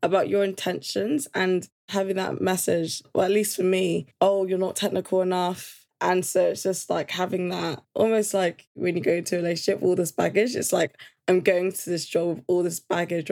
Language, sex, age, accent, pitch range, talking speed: English, female, 10-29, British, 175-220 Hz, 205 wpm